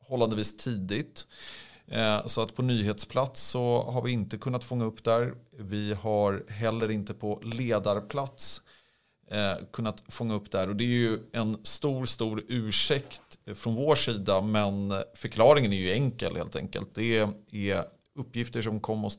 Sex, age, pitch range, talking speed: male, 40-59, 105-125 Hz, 150 wpm